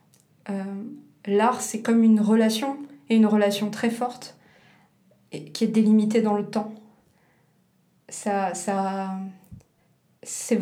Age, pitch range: 20-39, 210-230 Hz